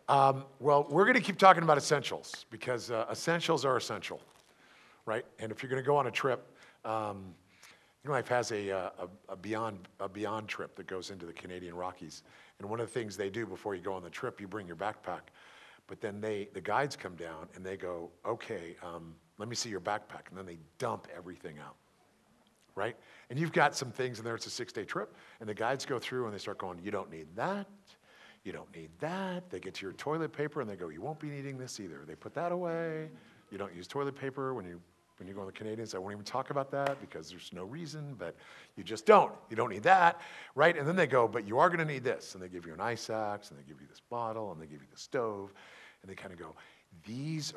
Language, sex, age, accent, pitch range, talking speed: English, male, 50-69, American, 90-135 Hz, 250 wpm